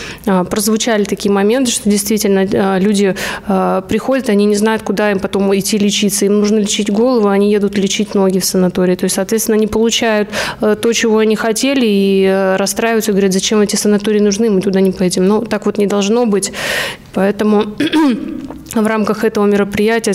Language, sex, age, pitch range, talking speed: Russian, female, 20-39, 200-225 Hz, 175 wpm